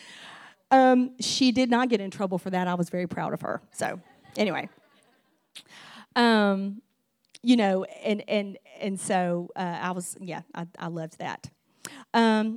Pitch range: 185-225 Hz